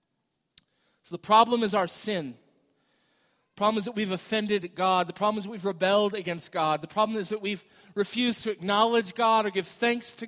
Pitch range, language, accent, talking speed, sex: 205-240 Hz, English, American, 200 wpm, male